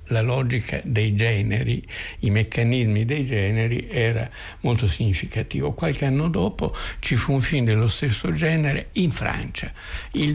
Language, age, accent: Italian, 60-79, native